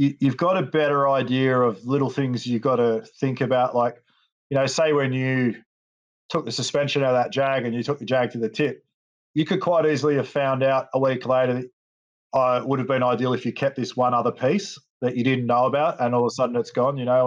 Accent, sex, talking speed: Australian, male, 250 wpm